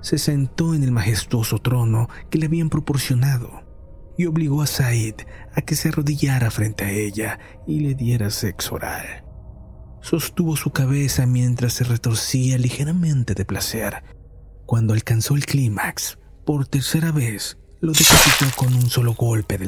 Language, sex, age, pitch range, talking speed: Spanish, male, 40-59, 105-145 Hz, 150 wpm